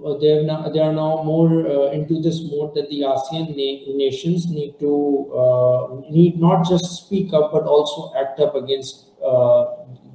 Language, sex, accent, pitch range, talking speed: English, male, Indian, 135-170 Hz, 170 wpm